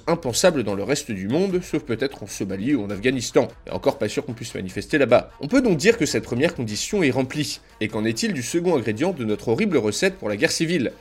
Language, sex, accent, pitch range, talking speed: French, male, French, 110-165 Hz, 245 wpm